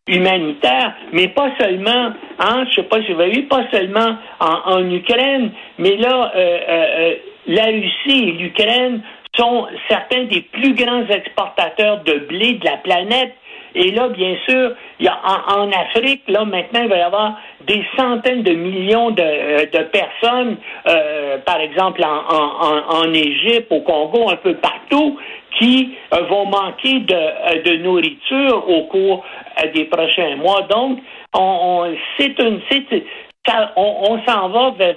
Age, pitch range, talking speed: 60-79, 180-245 Hz, 150 wpm